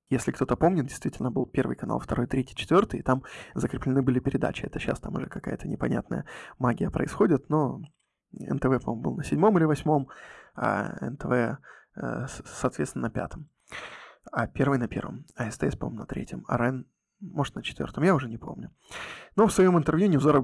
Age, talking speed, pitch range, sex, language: 20-39, 175 wpm, 130-150 Hz, male, Russian